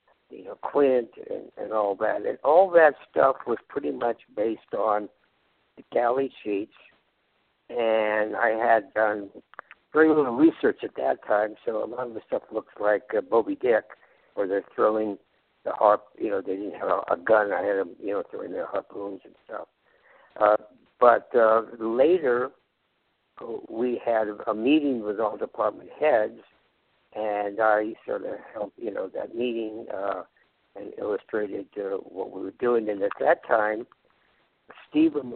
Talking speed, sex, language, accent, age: 165 wpm, male, English, American, 60-79